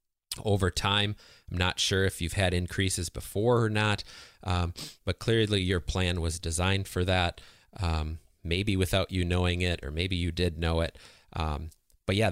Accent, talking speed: American, 175 wpm